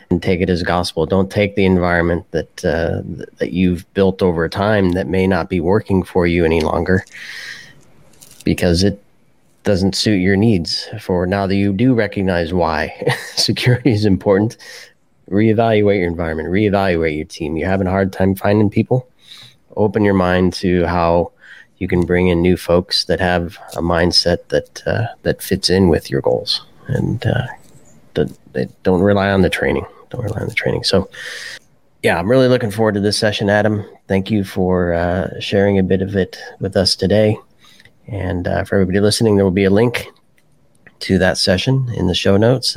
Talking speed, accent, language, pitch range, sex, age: 180 wpm, American, English, 90-100 Hz, male, 30-49